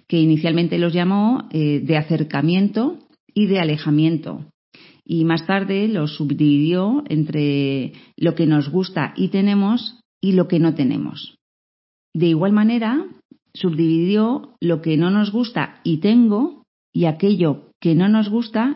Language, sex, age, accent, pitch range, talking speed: Spanish, female, 40-59, Spanish, 155-210 Hz, 140 wpm